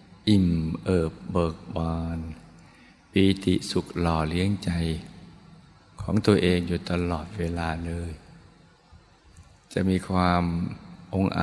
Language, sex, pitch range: Thai, male, 85-95 Hz